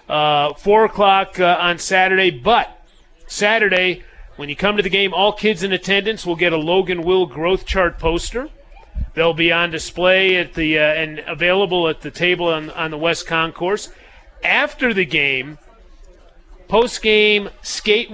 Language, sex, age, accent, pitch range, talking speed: English, male, 40-59, American, 165-195 Hz, 160 wpm